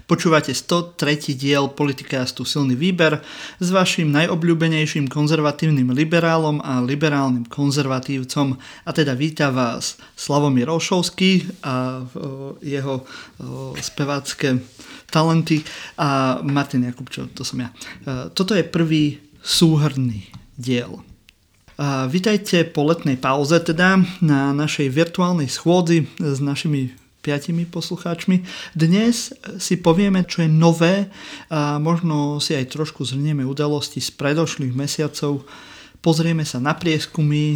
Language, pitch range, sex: Slovak, 140-165 Hz, male